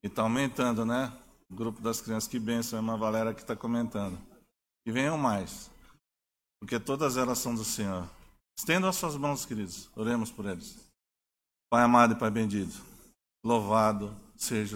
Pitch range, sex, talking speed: 115-150 Hz, male, 165 wpm